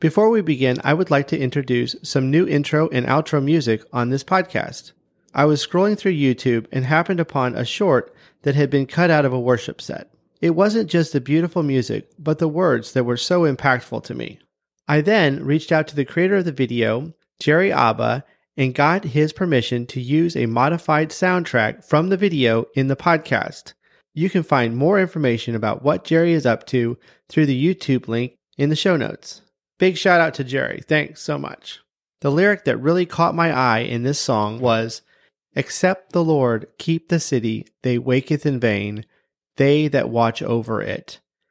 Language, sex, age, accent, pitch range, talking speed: English, male, 30-49, American, 125-170 Hz, 190 wpm